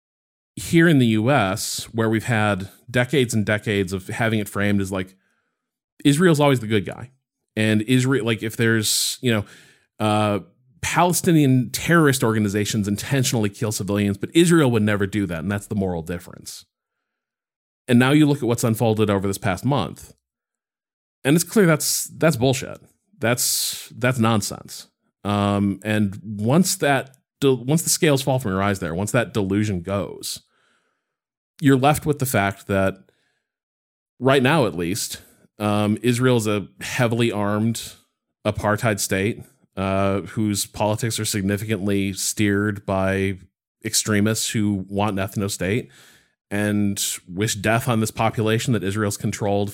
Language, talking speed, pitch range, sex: English, 150 wpm, 100-125 Hz, male